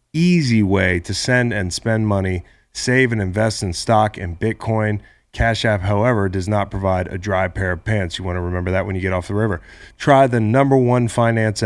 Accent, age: American, 30-49